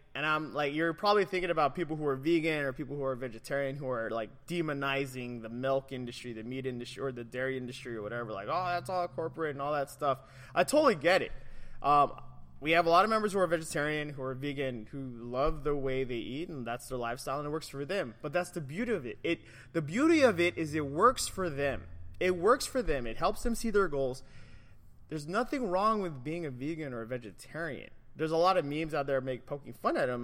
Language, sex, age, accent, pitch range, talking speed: English, male, 20-39, American, 130-175 Hz, 240 wpm